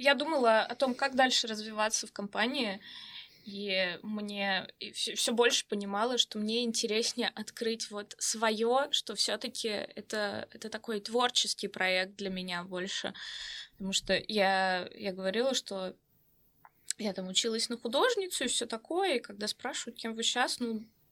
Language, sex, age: Russian, female, 20-39